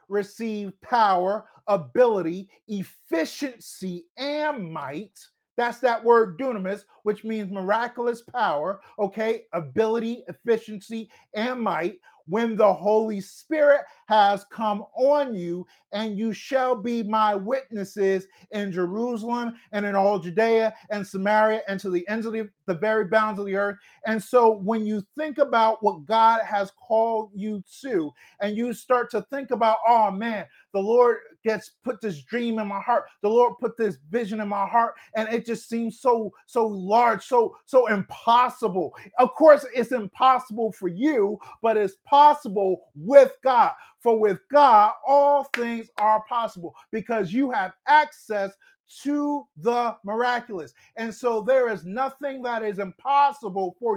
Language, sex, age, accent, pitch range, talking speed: English, male, 40-59, American, 205-250 Hz, 150 wpm